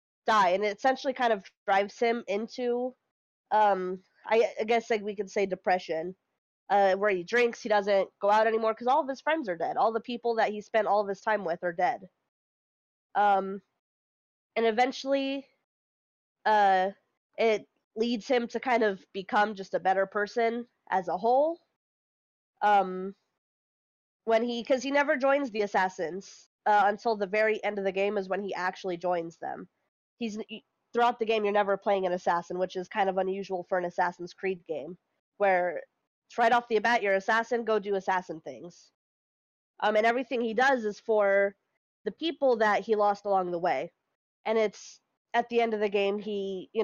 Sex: female